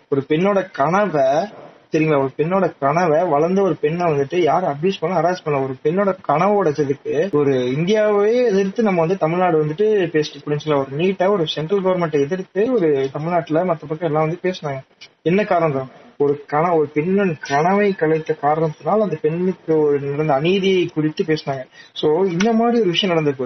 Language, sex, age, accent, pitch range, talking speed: Tamil, male, 30-49, native, 150-195 Hz, 165 wpm